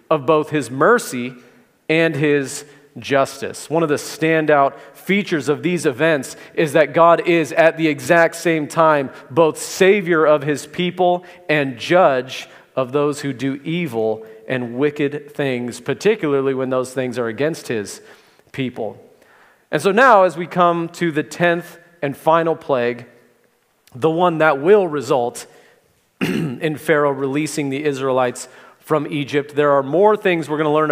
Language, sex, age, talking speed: English, male, 40-59, 155 wpm